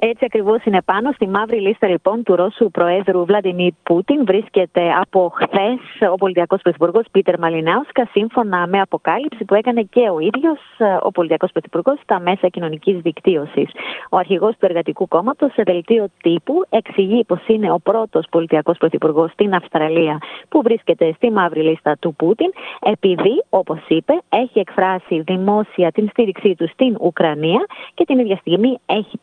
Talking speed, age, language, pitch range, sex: 155 wpm, 30-49, Greek, 165-220 Hz, female